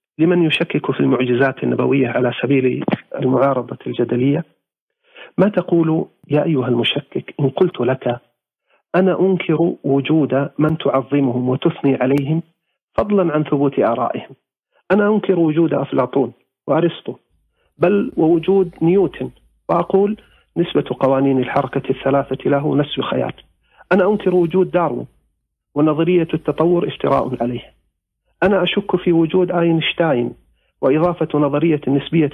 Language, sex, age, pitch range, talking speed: Arabic, male, 40-59, 130-170 Hz, 110 wpm